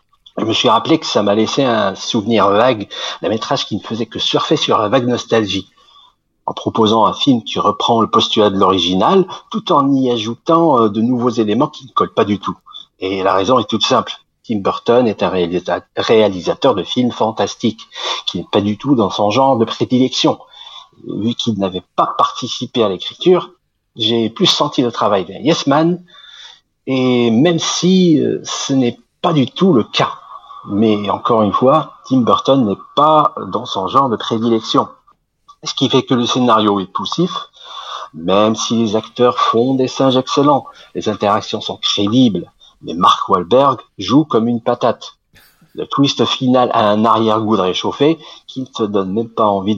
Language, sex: French, male